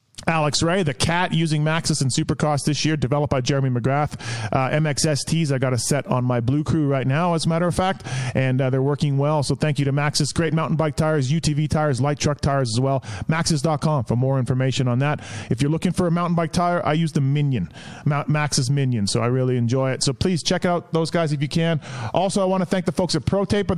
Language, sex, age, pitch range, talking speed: English, male, 30-49, 135-165 Hz, 240 wpm